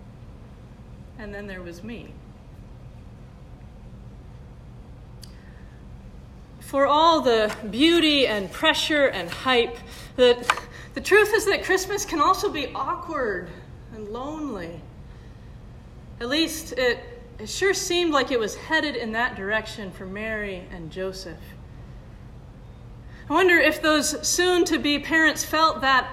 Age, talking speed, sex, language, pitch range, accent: 30-49, 115 wpm, female, English, 215-315 Hz, American